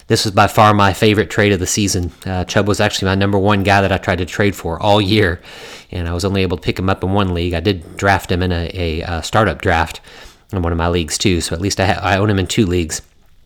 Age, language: 30-49, English